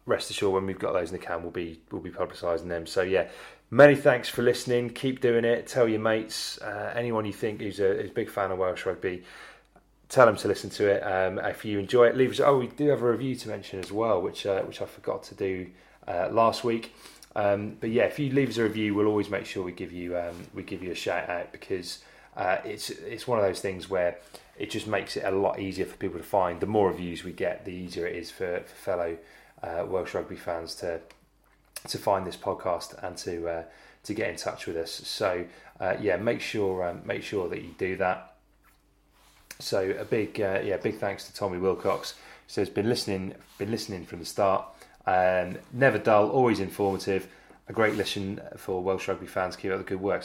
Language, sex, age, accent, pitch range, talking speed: English, male, 30-49, British, 95-115 Hz, 230 wpm